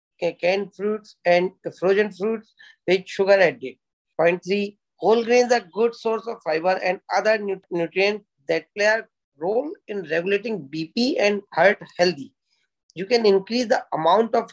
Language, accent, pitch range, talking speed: English, Indian, 175-215 Hz, 155 wpm